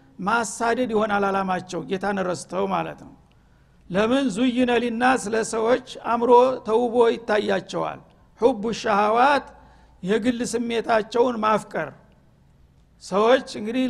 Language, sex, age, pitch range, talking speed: Amharic, male, 60-79, 210-245 Hz, 80 wpm